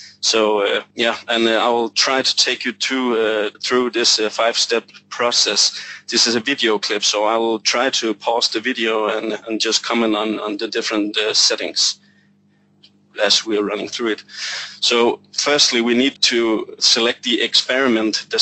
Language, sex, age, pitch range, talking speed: English, male, 30-49, 110-125 Hz, 180 wpm